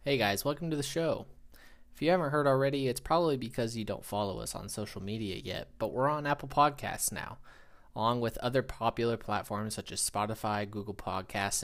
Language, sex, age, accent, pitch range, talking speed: English, male, 20-39, American, 110-135 Hz, 195 wpm